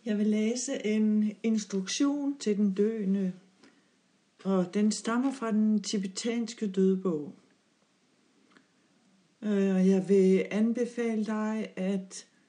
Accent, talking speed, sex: native, 100 wpm, female